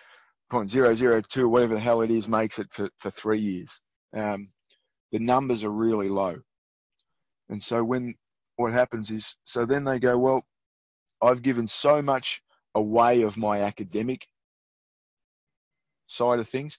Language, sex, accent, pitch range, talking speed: English, male, Australian, 105-125 Hz, 140 wpm